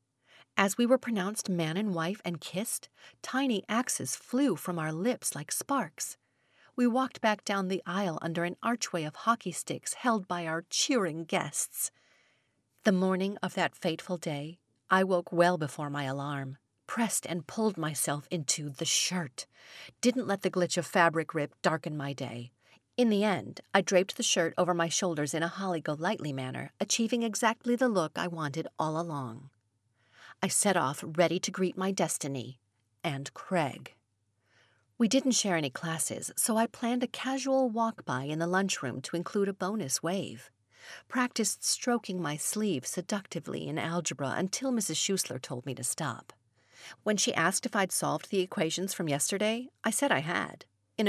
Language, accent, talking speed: English, American, 170 wpm